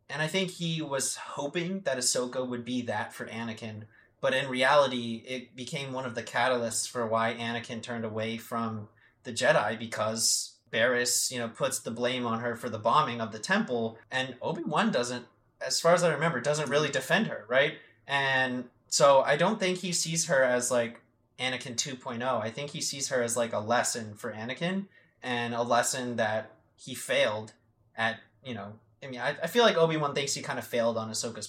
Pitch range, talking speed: 120-145 Hz, 195 wpm